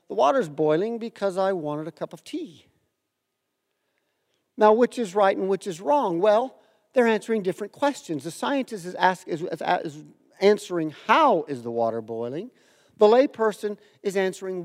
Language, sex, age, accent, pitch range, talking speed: English, male, 50-69, American, 160-225 Hz, 165 wpm